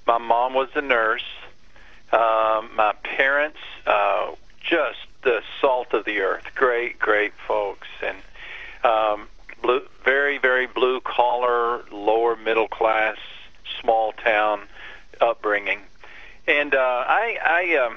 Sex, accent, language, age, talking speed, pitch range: male, American, English, 50-69, 105 wpm, 110-135 Hz